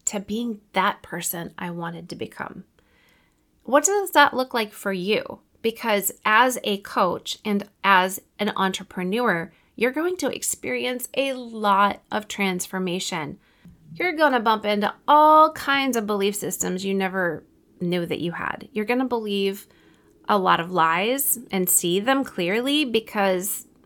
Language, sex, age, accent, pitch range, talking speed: English, female, 30-49, American, 185-245 Hz, 150 wpm